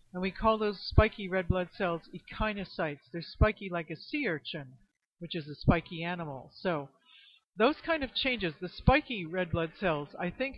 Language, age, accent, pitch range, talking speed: English, 60-79, American, 170-220 Hz, 180 wpm